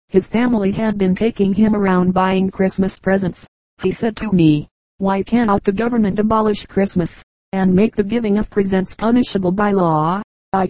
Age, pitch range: 40-59, 180-205 Hz